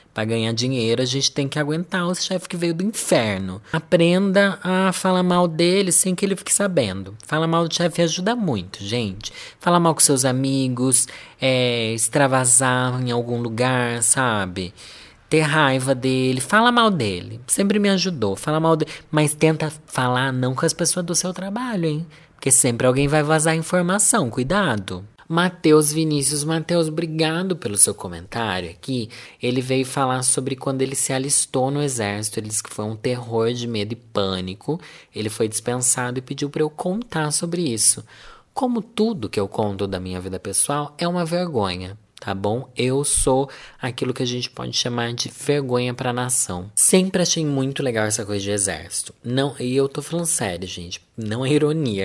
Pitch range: 110-155 Hz